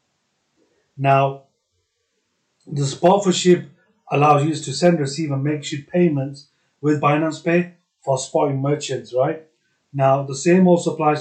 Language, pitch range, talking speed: English, 135-160 Hz, 140 wpm